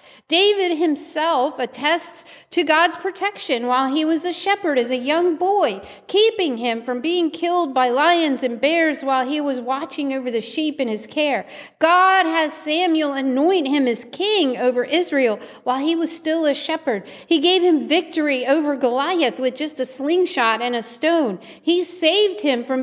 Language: English